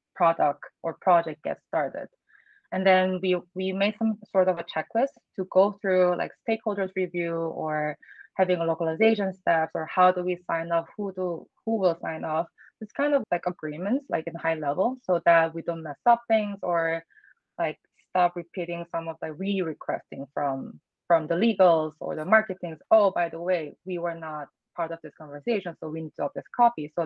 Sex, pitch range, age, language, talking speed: female, 165-190 Hz, 20-39, English, 195 wpm